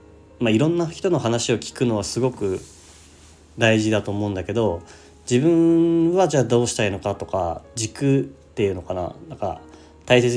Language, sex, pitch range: Japanese, male, 85-120 Hz